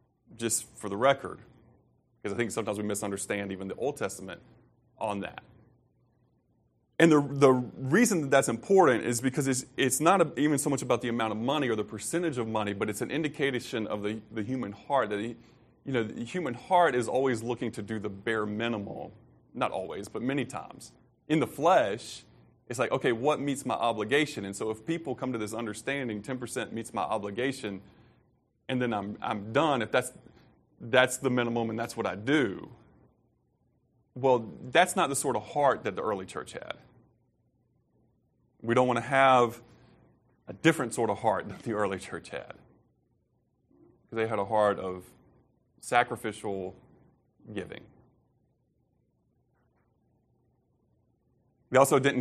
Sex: male